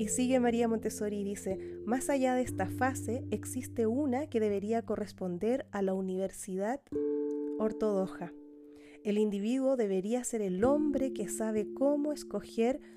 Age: 30-49